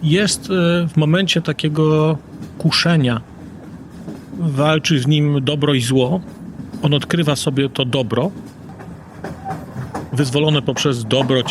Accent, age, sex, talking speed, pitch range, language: native, 40-59, male, 100 wpm, 145-185 Hz, Polish